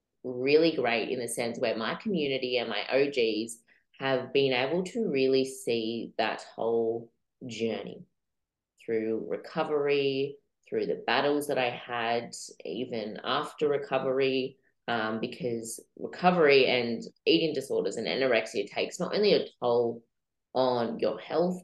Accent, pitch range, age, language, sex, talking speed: Australian, 120-145 Hz, 20-39, English, female, 130 wpm